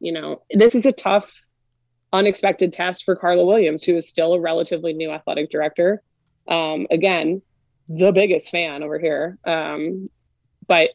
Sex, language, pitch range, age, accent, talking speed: female, English, 155-185 Hz, 20-39, American, 155 wpm